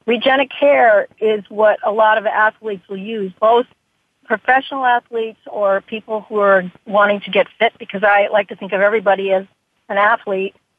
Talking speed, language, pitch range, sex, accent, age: 165 wpm, English, 195-235 Hz, female, American, 50-69